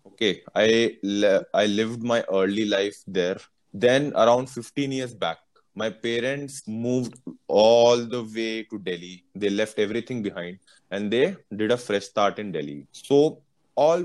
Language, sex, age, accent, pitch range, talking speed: Hindi, male, 20-39, native, 105-135 Hz, 155 wpm